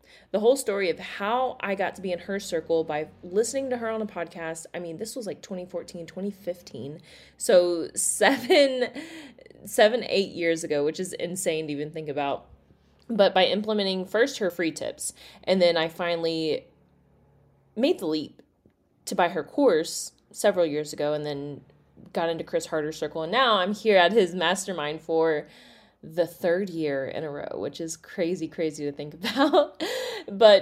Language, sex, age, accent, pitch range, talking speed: English, female, 20-39, American, 160-210 Hz, 175 wpm